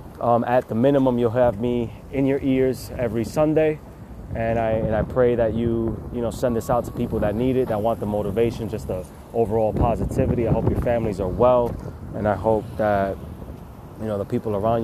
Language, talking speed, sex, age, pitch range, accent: English, 210 wpm, male, 20-39, 110-130 Hz, American